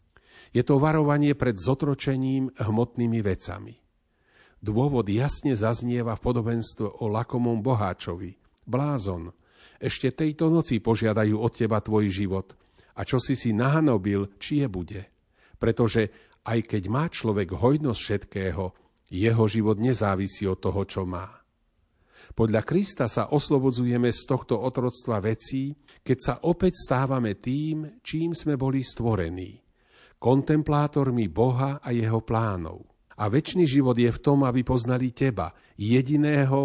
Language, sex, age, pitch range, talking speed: Slovak, male, 50-69, 105-135 Hz, 130 wpm